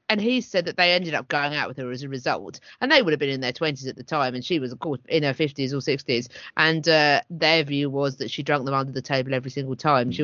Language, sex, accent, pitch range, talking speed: English, female, British, 140-190 Hz, 300 wpm